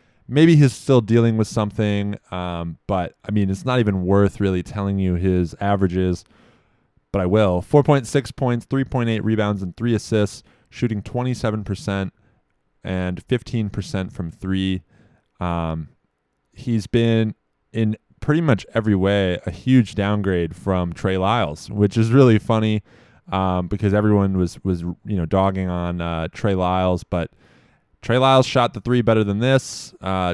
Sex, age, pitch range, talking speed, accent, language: male, 20-39, 95-115 Hz, 150 wpm, American, English